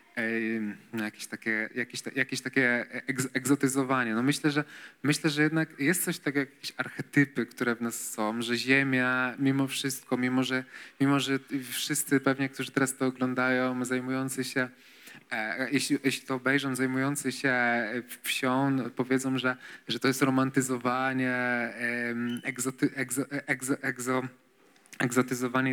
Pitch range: 125-145 Hz